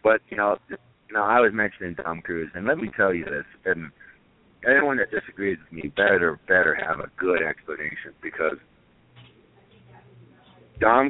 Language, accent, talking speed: English, American, 155 wpm